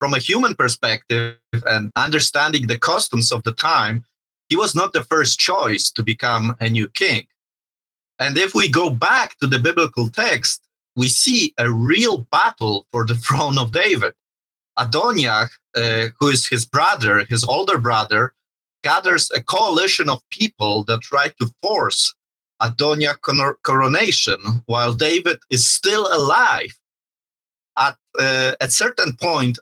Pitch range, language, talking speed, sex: 115-150 Hz, English, 140 wpm, male